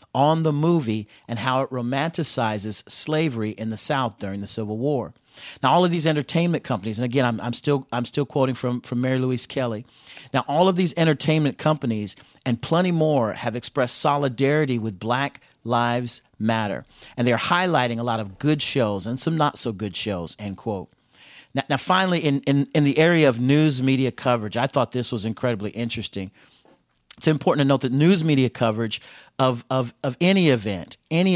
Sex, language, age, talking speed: male, English, 40-59, 190 wpm